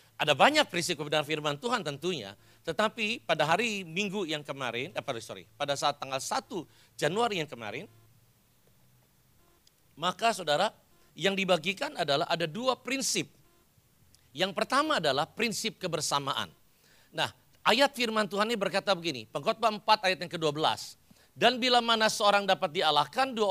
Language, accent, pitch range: Indonesian, native, 145-210 Hz